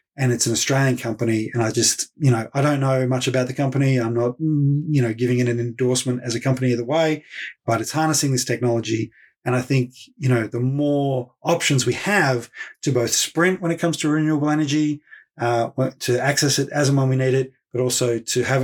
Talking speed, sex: 220 wpm, male